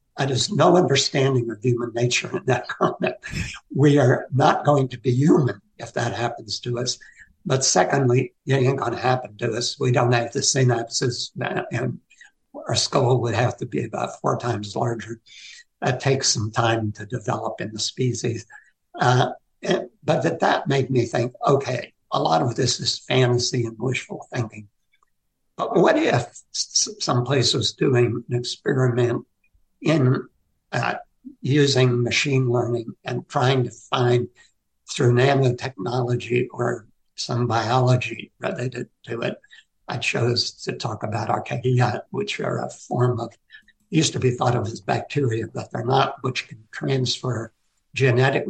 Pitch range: 120-135 Hz